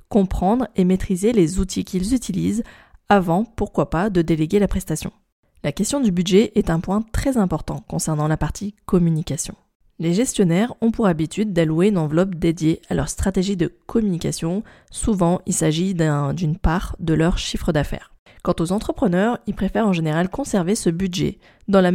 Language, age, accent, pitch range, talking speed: French, 20-39, French, 165-210 Hz, 170 wpm